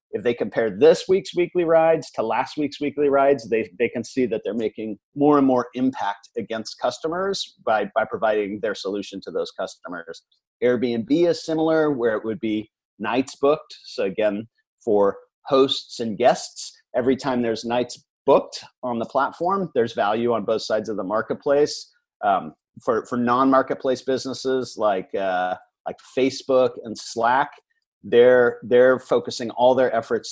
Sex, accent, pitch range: male, American, 115-160 Hz